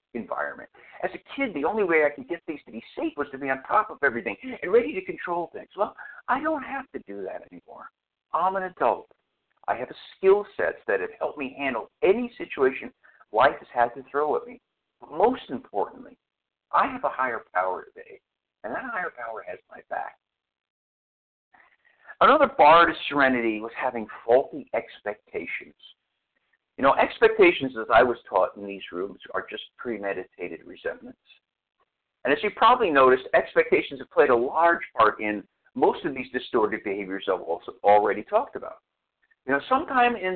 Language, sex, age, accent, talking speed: English, male, 60-79, American, 175 wpm